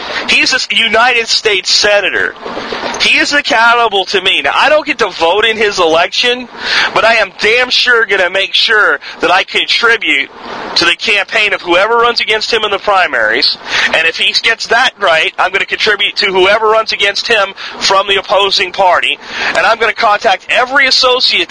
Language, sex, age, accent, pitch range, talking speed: English, male, 40-59, American, 180-235 Hz, 190 wpm